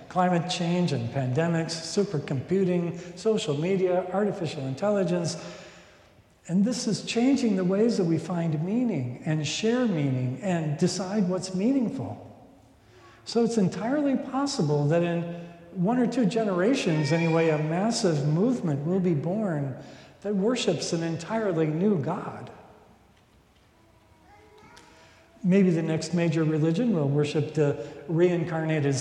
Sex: male